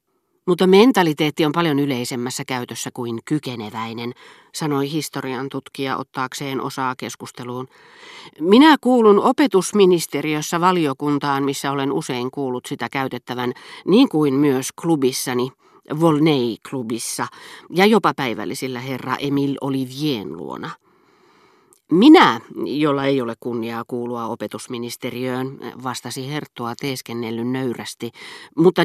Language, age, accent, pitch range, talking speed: Finnish, 40-59, native, 120-155 Hz, 100 wpm